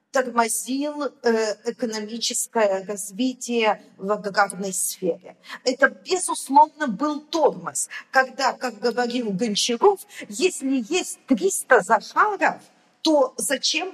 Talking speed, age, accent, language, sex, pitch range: 85 wpm, 40-59, native, Russian, female, 225-300 Hz